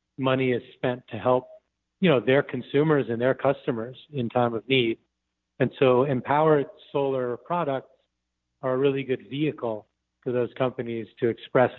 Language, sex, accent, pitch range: English, male, American, 115-135 Hz